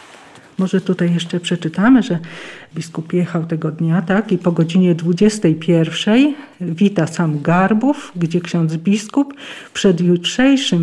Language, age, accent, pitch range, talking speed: Polish, 50-69, native, 170-210 Hz, 120 wpm